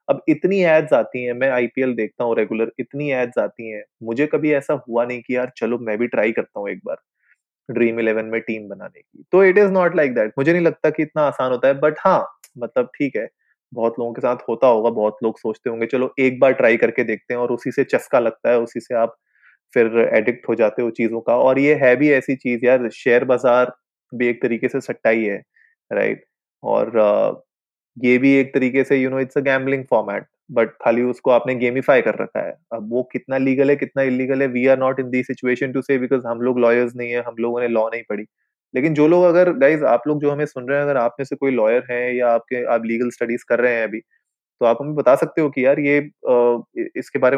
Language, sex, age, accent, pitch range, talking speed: Hindi, male, 20-39, native, 120-140 Hz, 240 wpm